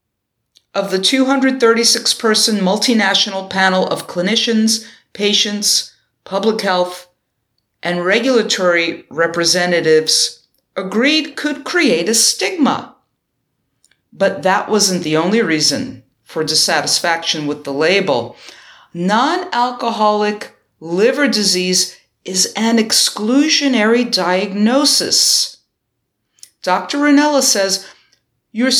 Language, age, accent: English, 50-69, American